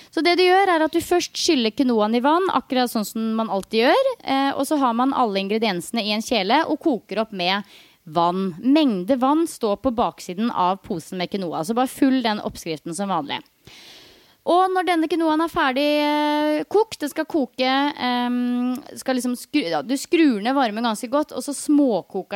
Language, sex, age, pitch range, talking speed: English, female, 30-49, 215-295 Hz, 190 wpm